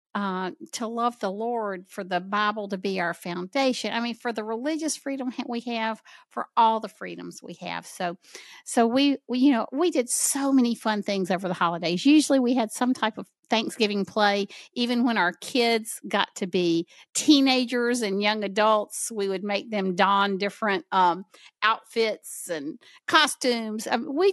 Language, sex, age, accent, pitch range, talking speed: English, female, 50-69, American, 195-255 Hz, 175 wpm